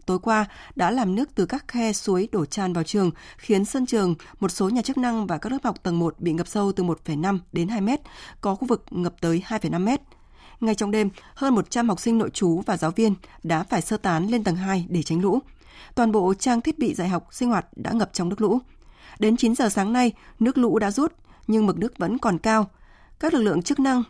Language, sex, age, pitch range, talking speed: Vietnamese, female, 20-39, 180-230 Hz, 245 wpm